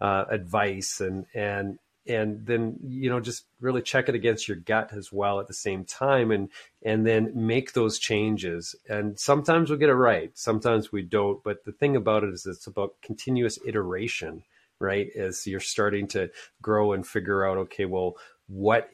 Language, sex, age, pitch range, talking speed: English, male, 40-59, 95-115 Hz, 185 wpm